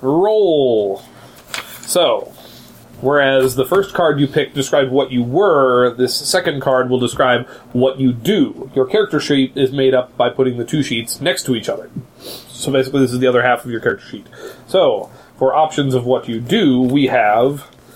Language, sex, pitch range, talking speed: English, male, 130-180 Hz, 185 wpm